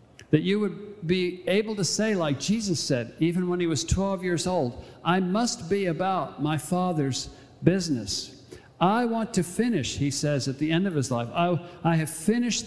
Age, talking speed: 50-69, 190 wpm